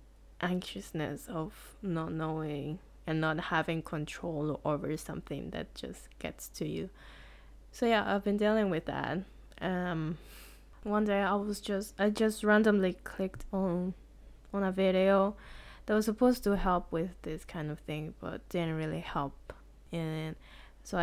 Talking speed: 150 wpm